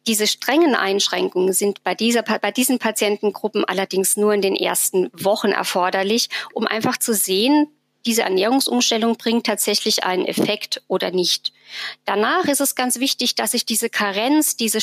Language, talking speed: German, 155 wpm